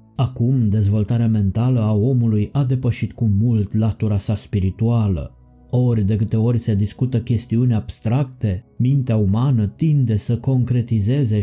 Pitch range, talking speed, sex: 110-125 Hz, 130 wpm, male